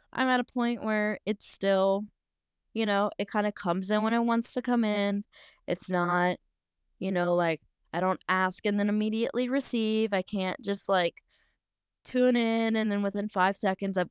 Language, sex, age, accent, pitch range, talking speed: English, female, 20-39, American, 170-210 Hz, 185 wpm